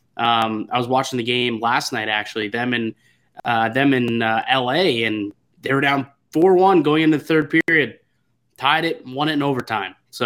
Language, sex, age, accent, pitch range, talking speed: English, male, 20-39, American, 120-145 Hz, 195 wpm